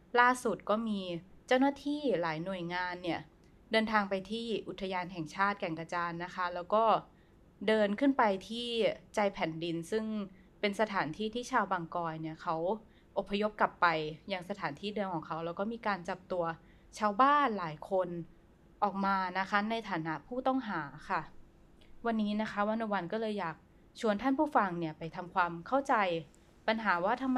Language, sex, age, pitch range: Thai, female, 20-39, 175-220 Hz